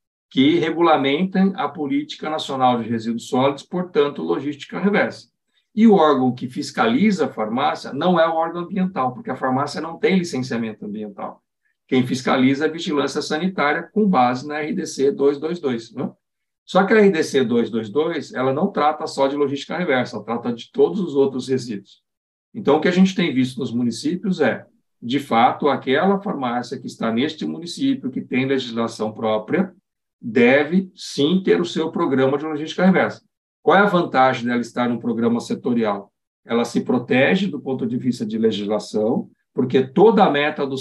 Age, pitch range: 60-79, 130-190 Hz